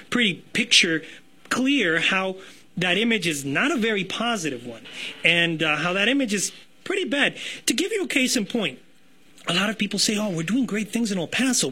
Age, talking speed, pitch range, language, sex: 30-49, 205 wpm, 190-270 Hz, English, male